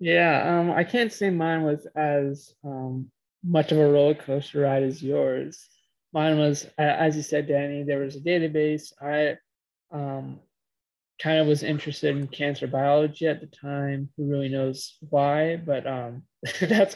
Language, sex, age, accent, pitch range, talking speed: English, male, 20-39, American, 140-160 Hz, 165 wpm